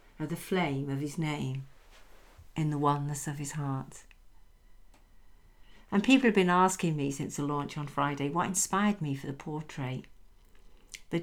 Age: 50-69